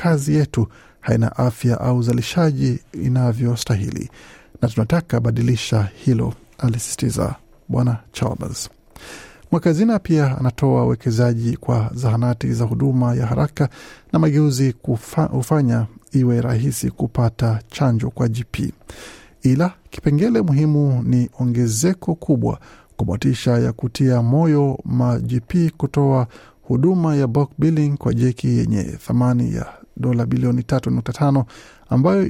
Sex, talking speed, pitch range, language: male, 110 wpm, 120-145 Hz, Swahili